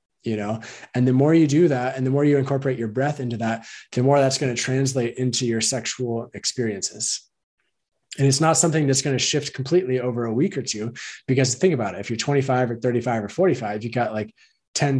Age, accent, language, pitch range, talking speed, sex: 20-39, American, English, 110-135 Hz, 225 wpm, male